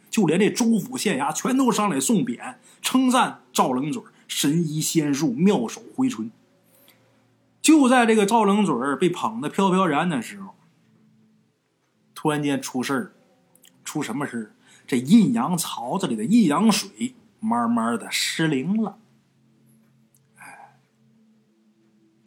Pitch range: 175-245 Hz